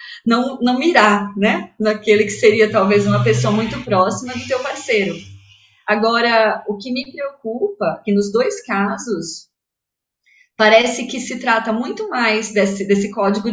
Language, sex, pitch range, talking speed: Portuguese, female, 195-240 Hz, 145 wpm